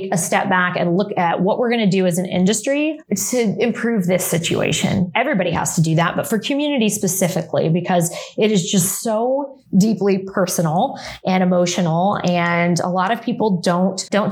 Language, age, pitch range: English, 20-39, 180-205 Hz